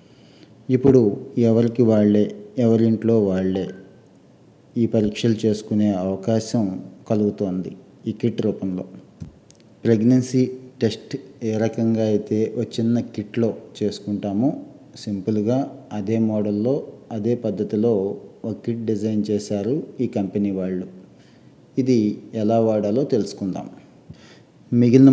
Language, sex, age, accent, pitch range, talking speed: Telugu, male, 30-49, native, 100-115 Hz, 95 wpm